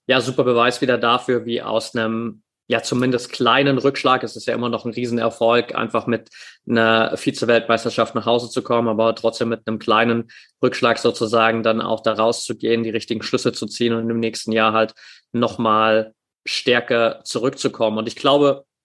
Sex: male